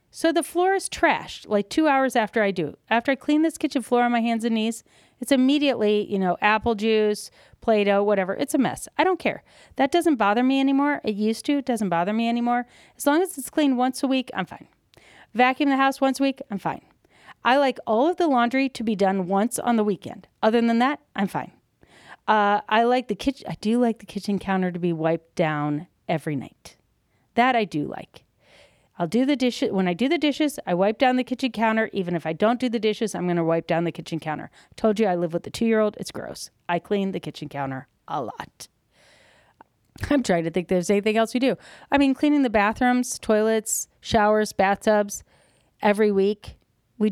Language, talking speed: English, 225 wpm